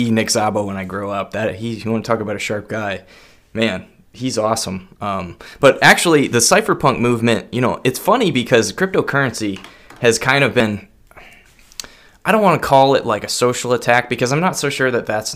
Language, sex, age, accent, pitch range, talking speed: English, male, 20-39, American, 110-130 Hz, 200 wpm